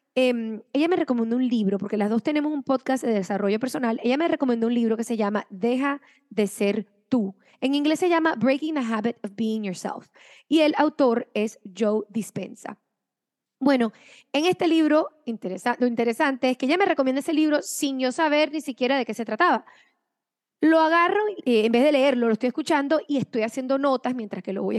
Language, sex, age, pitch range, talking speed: English, female, 20-39, 220-275 Hz, 205 wpm